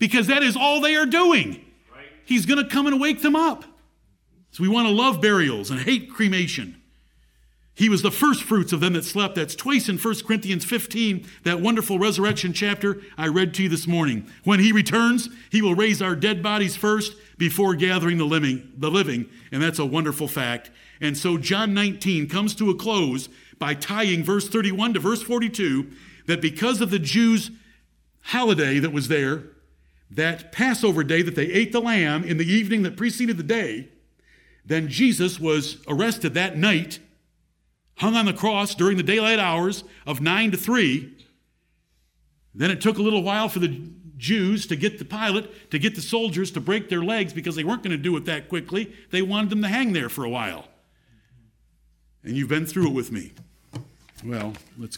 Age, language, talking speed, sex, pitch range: 50-69, English, 190 wpm, male, 150-215 Hz